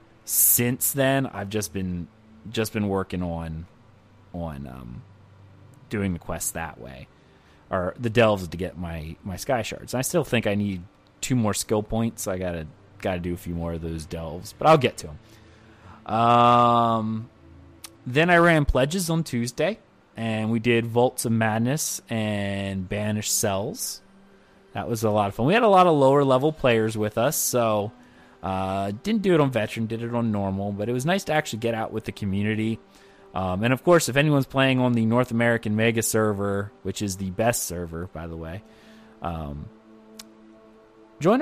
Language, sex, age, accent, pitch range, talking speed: English, male, 30-49, American, 100-125 Hz, 185 wpm